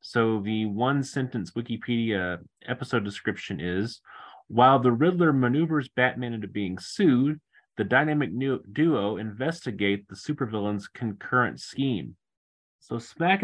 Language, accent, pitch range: English, American, 105-140 Hz